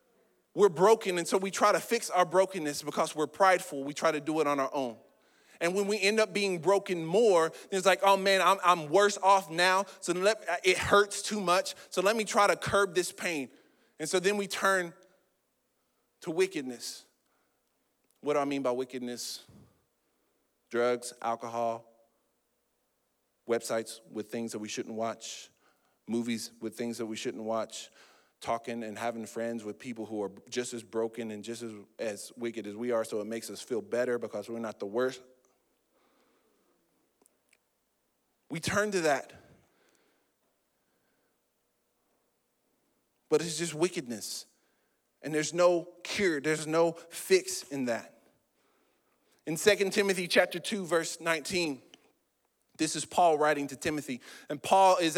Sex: male